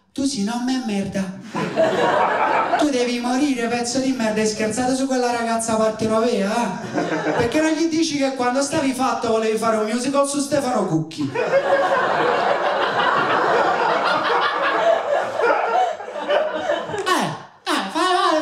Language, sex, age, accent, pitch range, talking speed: Italian, male, 30-49, native, 150-240 Hz, 125 wpm